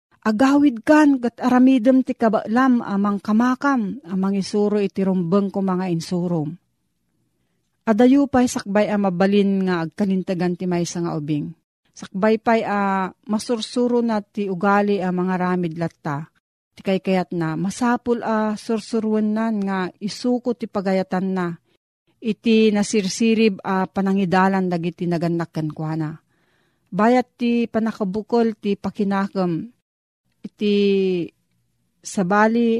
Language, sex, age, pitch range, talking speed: Filipino, female, 40-59, 175-220 Hz, 115 wpm